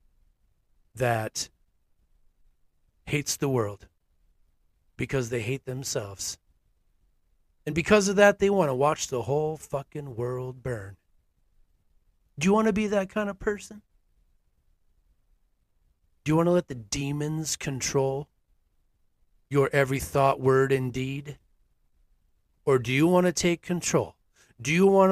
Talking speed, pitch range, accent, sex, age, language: 130 wpm, 90-145 Hz, American, male, 40-59, English